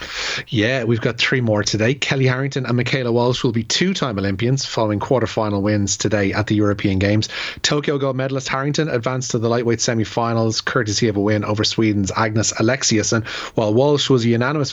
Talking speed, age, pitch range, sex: 185 wpm, 30-49, 110-135 Hz, male